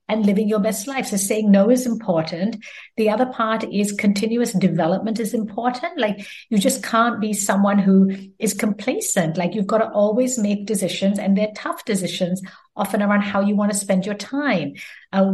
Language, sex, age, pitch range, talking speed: English, female, 60-79, 195-240 Hz, 190 wpm